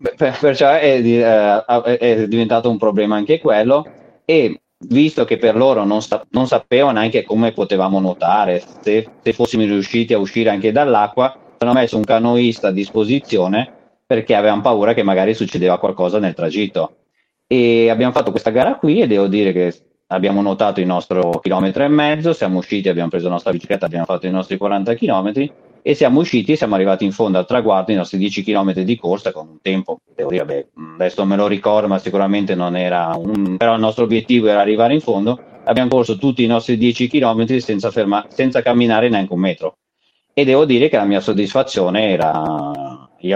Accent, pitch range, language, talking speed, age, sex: native, 95-120 Hz, Italian, 185 wpm, 30-49, male